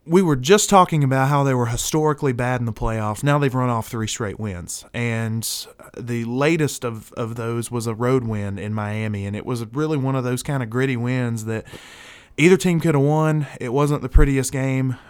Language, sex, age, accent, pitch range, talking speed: English, male, 20-39, American, 115-140 Hz, 215 wpm